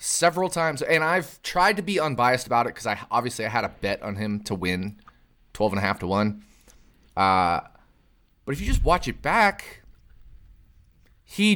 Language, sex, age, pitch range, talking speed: English, male, 20-39, 130-195 Hz, 185 wpm